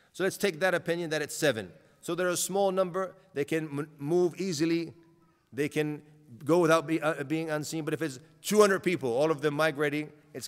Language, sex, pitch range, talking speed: English, male, 145-180 Hz, 205 wpm